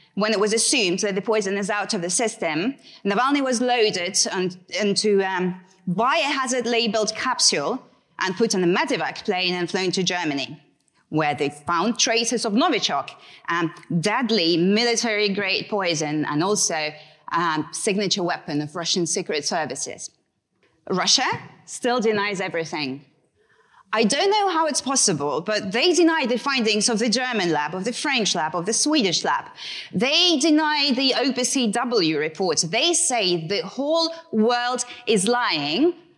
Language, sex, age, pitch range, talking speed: English, female, 30-49, 175-245 Hz, 155 wpm